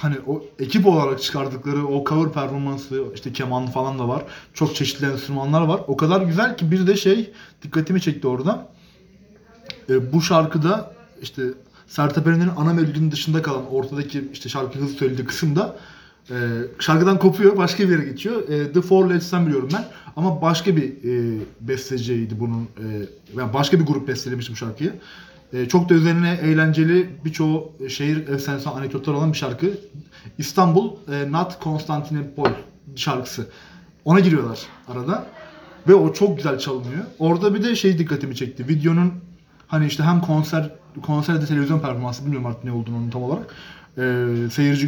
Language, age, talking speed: Turkish, 30-49, 155 wpm